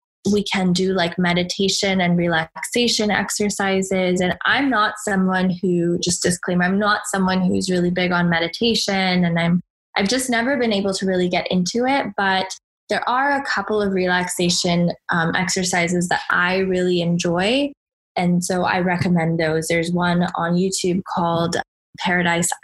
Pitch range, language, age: 175-200 Hz, English, 10-29